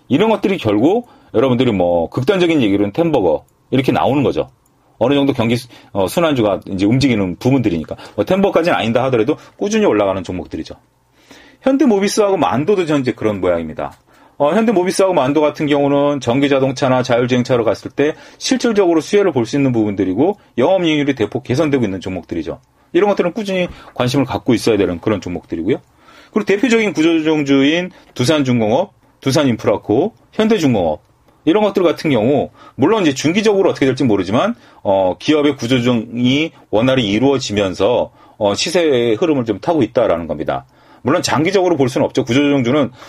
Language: Korean